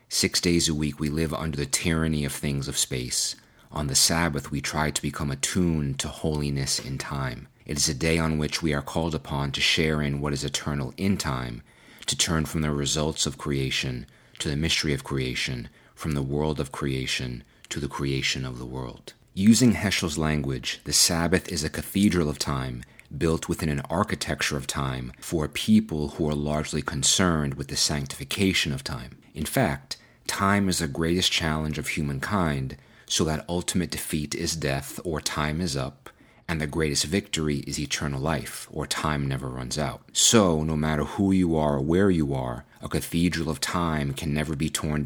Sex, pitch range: male, 70-80 Hz